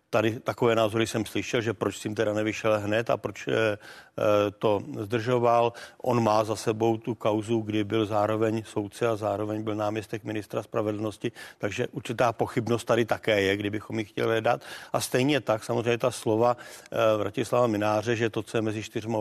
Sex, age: male, 50-69